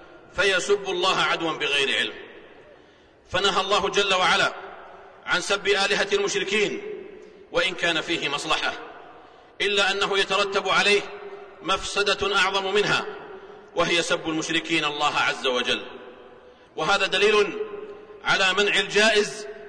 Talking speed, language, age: 105 wpm, Arabic, 40-59